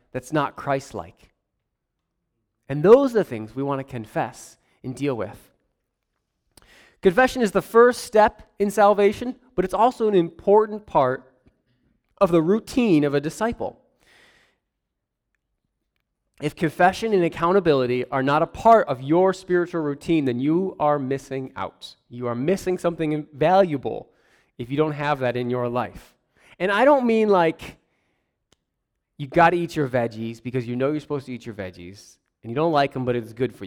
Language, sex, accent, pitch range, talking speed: English, male, American, 125-190 Hz, 165 wpm